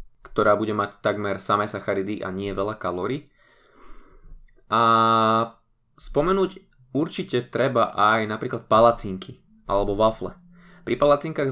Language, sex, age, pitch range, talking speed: Slovak, male, 20-39, 105-125 Hz, 110 wpm